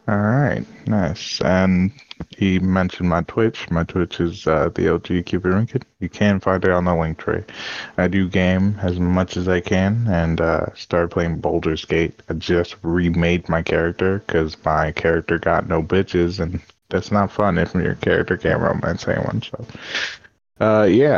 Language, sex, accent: English, male, American